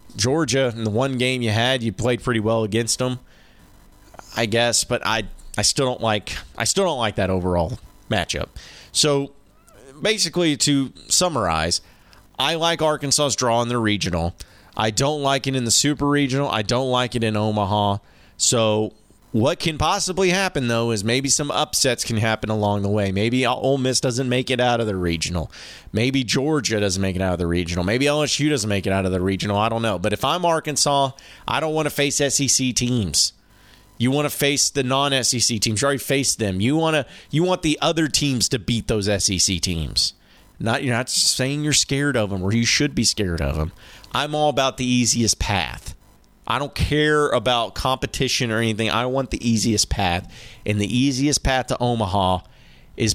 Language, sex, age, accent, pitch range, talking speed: English, male, 30-49, American, 100-135 Hz, 195 wpm